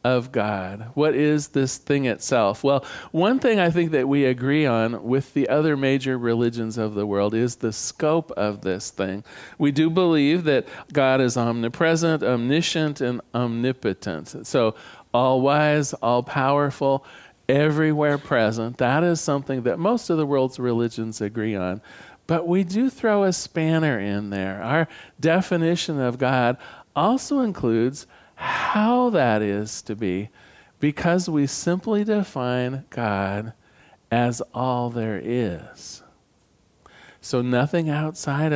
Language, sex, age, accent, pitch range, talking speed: English, male, 40-59, American, 115-150 Hz, 140 wpm